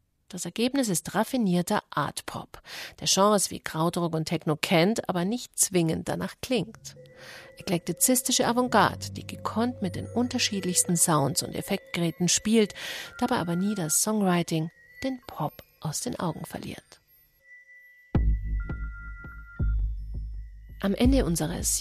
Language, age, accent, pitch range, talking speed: German, 40-59, German, 165-210 Hz, 115 wpm